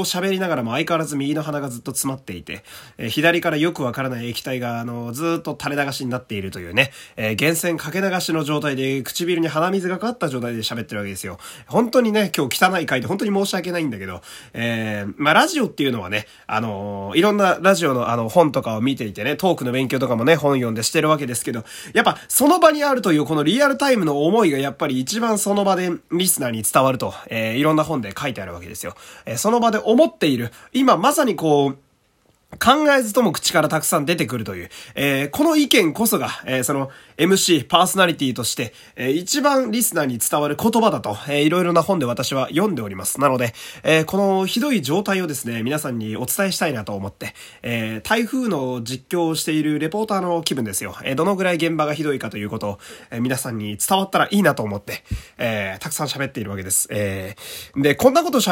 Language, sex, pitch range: Japanese, male, 120-185 Hz